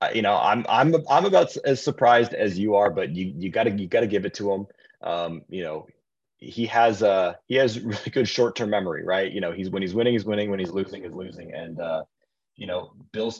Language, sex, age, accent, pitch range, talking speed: English, male, 20-39, American, 95-115 Hz, 235 wpm